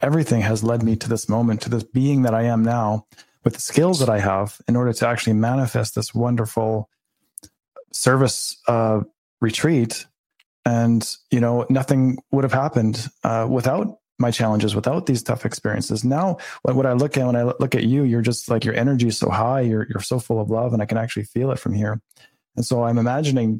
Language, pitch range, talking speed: English, 110-125 Hz, 205 wpm